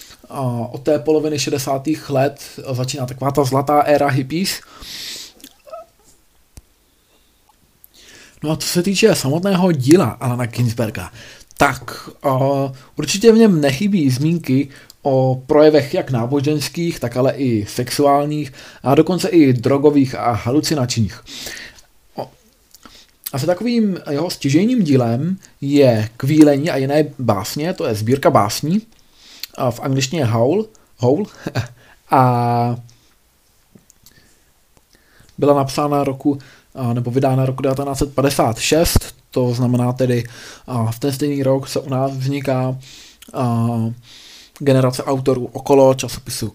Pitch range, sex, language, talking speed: 125-150 Hz, male, Czech, 105 wpm